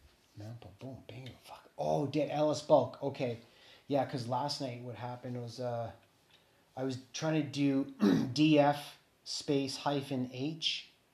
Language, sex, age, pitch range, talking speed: English, male, 30-49, 125-145 Hz, 140 wpm